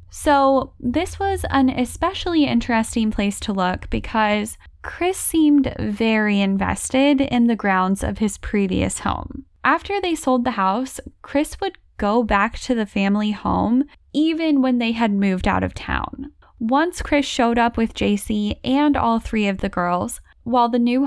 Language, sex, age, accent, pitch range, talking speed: English, female, 10-29, American, 210-275 Hz, 160 wpm